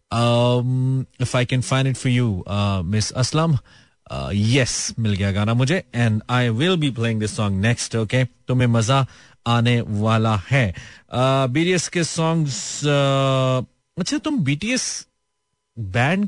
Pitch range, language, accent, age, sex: 105-145 Hz, Hindi, native, 30-49, male